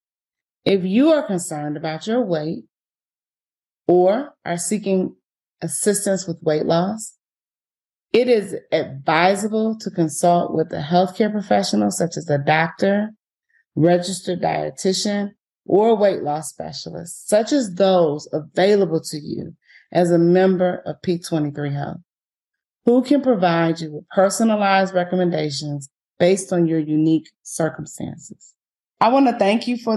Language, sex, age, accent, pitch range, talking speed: English, female, 30-49, American, 160-205 Hz, 125 wpm